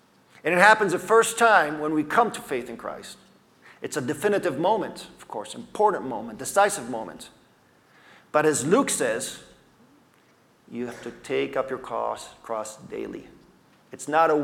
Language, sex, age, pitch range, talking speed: English, male, 40-59, 135-180 Hz, 160 wpm